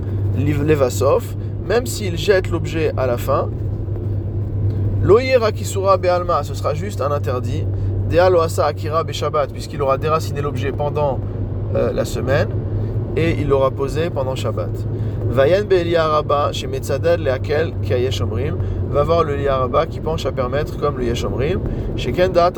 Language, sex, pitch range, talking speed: French, male, 110-140 Hz, 140 wpm